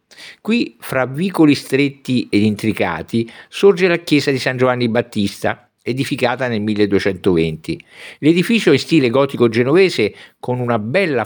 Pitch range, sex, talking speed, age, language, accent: 105-145 Hz, male, 130 wpm, 50-69, Italian, native